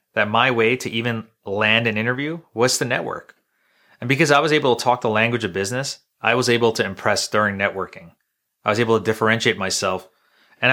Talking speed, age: 200 wpm, 30-49